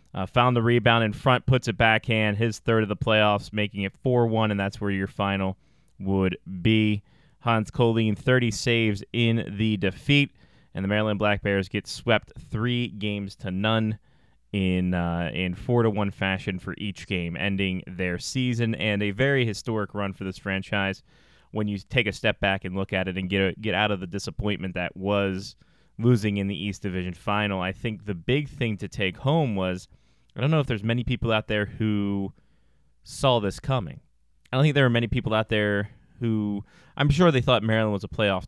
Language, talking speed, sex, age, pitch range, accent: English, 200 wpm, male, 20-39, 95-115 Hz, American